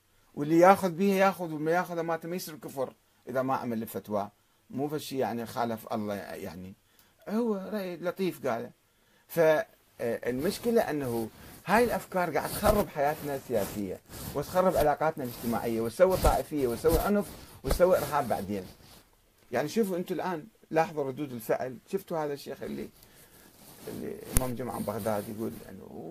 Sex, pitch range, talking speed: male, 125-185 Hz, 135 wpm